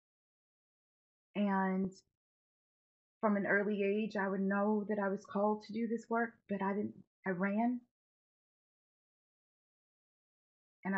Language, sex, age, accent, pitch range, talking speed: English, female, 30-49, American, 180-205 Hz, 120 wpm